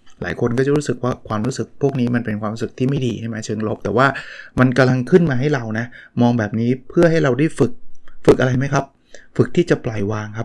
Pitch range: 115-140 Hz